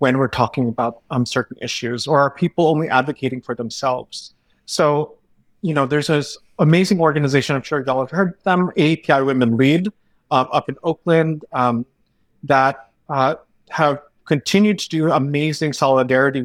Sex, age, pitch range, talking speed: male, 30-49, 130-160 Hz, 155 wpm